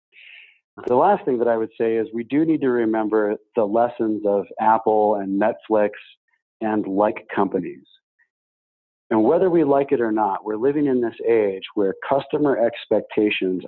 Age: 40-59